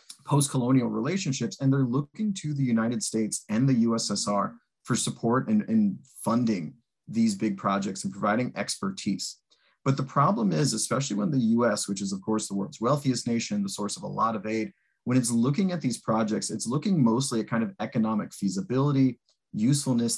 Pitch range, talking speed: 110-140 Hz, 180 wpm